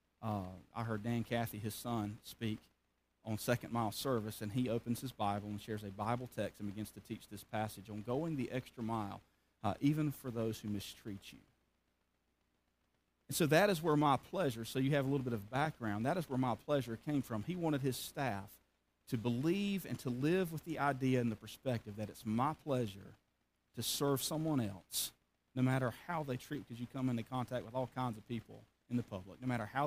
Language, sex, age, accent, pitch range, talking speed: English, male, 40-59, American, 105-145 Hz, 210 wpm